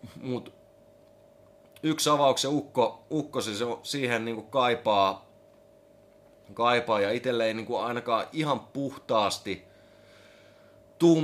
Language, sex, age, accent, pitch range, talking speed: Finnish, male, 30-49, native, 100-130 Hz, 100 wpm